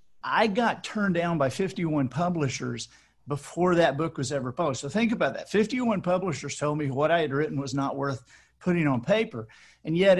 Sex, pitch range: male, 145-185 Hz